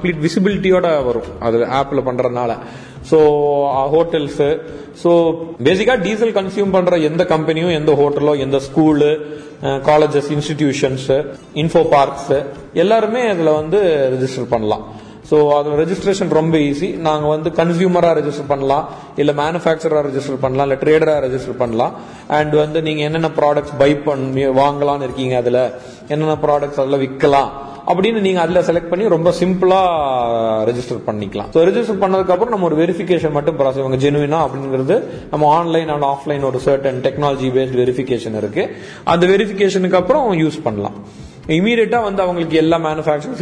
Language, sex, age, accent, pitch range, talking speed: Tamil, male, 30-49, native, 140-170 Hz, 30 wpm